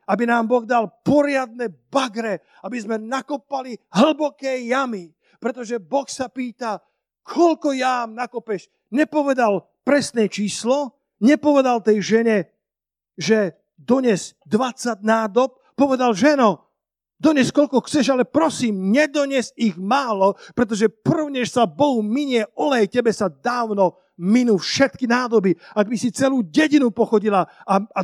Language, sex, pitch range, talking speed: Slovak, male, 200-260 Hz, 120 wpm